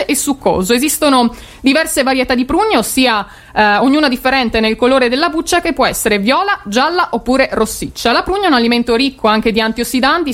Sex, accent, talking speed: female, native, 180 wpm